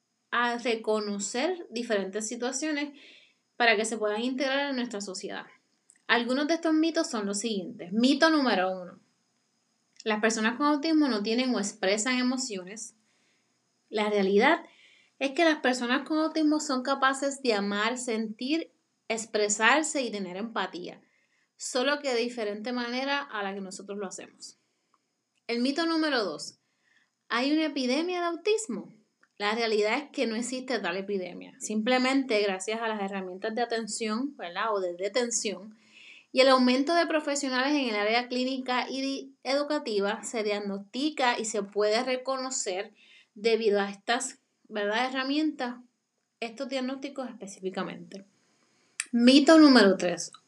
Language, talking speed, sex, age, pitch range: Spanish, 135 wpm, female, 10-29, 210-270 Hz